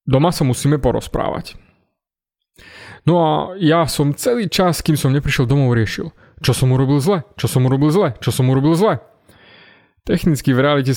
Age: 20-39